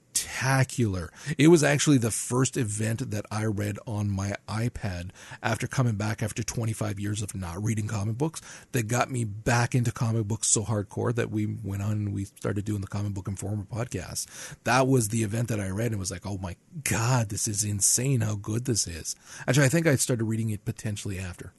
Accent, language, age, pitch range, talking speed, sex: American, English, 40-59, 105-120 Hz, 210 wpm, male